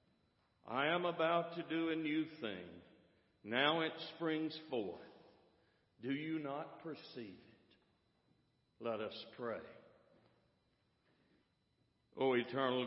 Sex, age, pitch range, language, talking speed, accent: male, 60-79, 120-155 Hz, English, 105 wpm, American